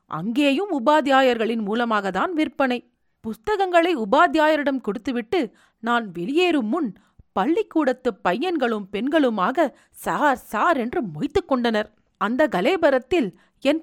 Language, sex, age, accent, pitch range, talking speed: Tamil, female, 40-59, native, 215-315 Hz, 85 wpm